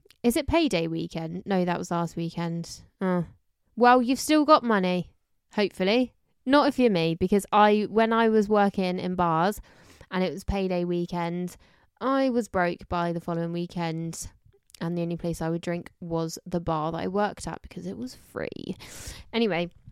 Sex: female